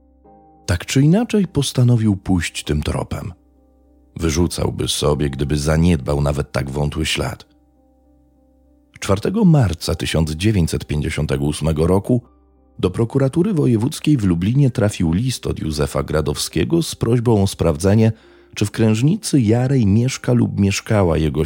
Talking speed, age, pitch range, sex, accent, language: 115 wpm, 40-59, 75-120 Hz, male, native, Polish